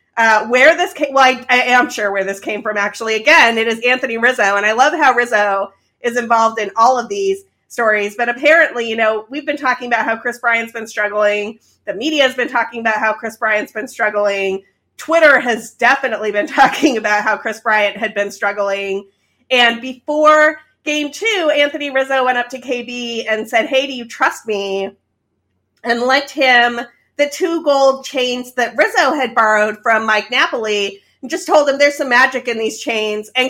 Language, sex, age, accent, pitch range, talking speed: English, female, 30-49, American, 220-285 Hz, 195 wpm